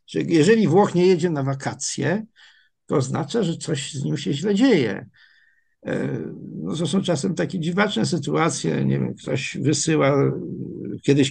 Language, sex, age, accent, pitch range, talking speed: Polish, male, 50-69, native, 145-185 Hz, 140 wpm